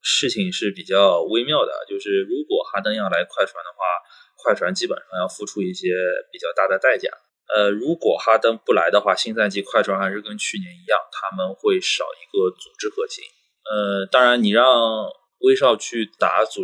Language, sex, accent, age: Chinese, male, native, 20-39